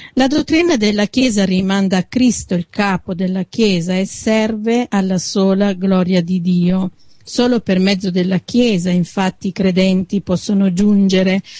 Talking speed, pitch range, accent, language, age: 145 wpm, 185-210 Hz, native, Italian, 50-69